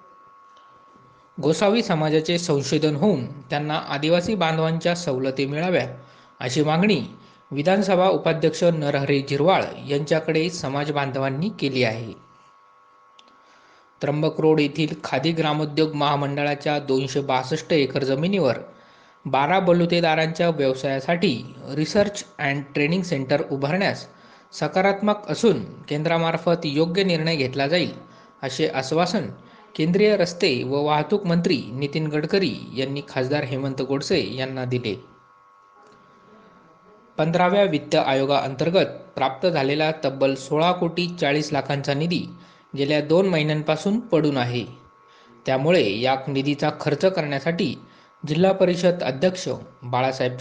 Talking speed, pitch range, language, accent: 100 wpm, 135-170 Hz, Marathi, native